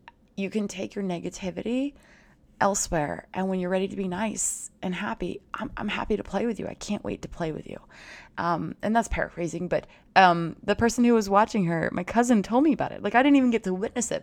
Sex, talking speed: female, 230 wpm